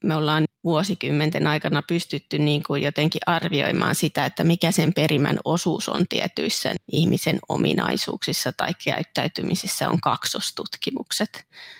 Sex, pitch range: female, 150-180 Hz